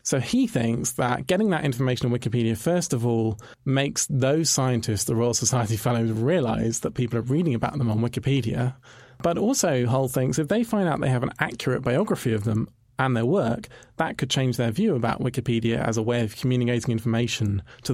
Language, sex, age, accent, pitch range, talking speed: English, male, 40-59, British, 120-150 Hz, 200 wpm